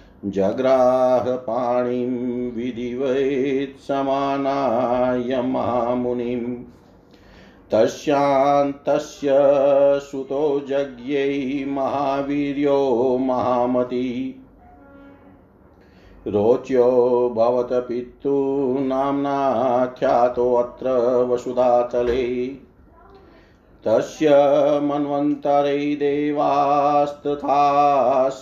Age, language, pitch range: 50-69, Hindi, 120-140 Hz